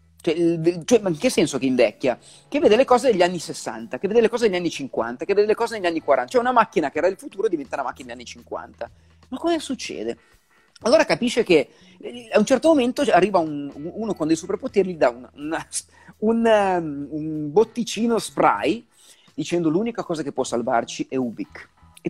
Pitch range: 145-230 Hz